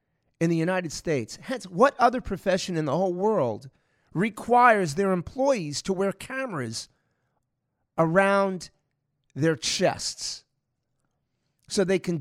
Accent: American